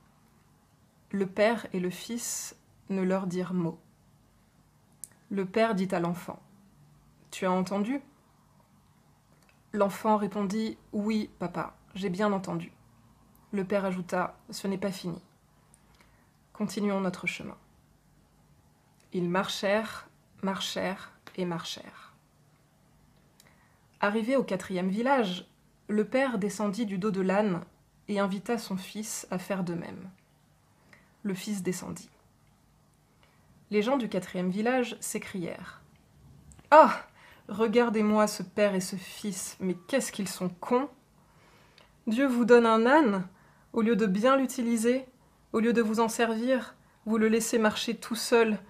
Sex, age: female, 20-39